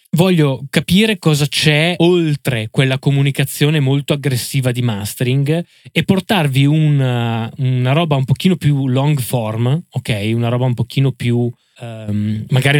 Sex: male